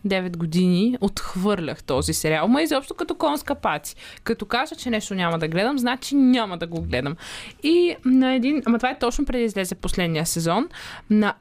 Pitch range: 195-275 Hz